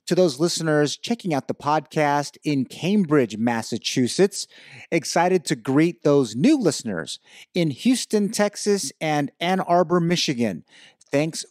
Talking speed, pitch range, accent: 125 wpm, 130-180 Hz, American